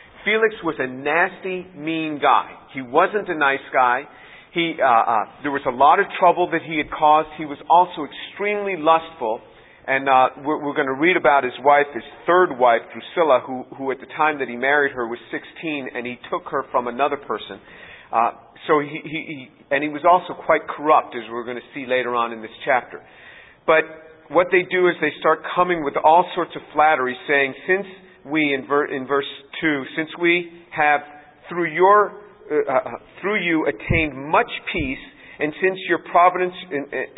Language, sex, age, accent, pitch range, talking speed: English, male, 50-69, American, 135-170 Hz, 190 wpm